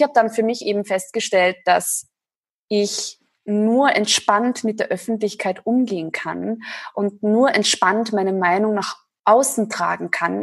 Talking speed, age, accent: 145 wpm, 20-39, German